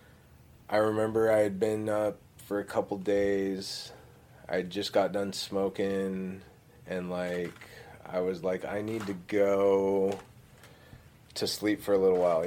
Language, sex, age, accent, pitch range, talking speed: English, male, 30-49, American, 95-120 Hz, 145 wpm